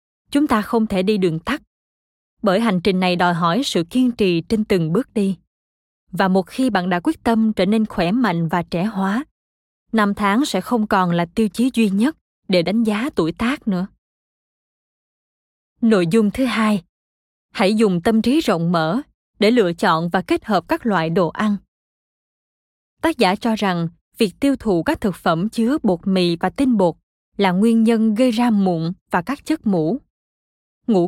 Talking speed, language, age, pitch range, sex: 185 wpm, Vietnamese, 20-39, 180-230 Hz, female